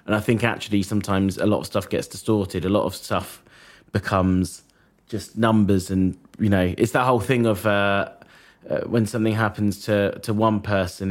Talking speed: 190 wpm